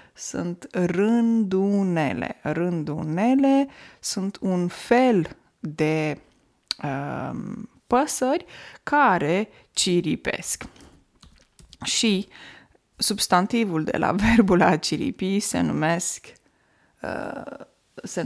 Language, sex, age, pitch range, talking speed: Romanian, female, 20-39, 180-255 Hz, 70 wpm